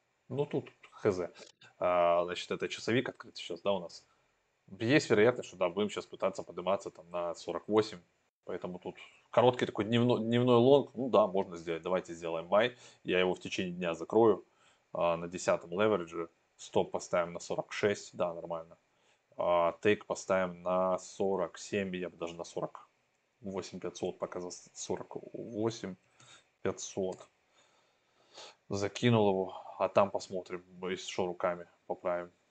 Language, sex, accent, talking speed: Russian, male, native, 135 wpm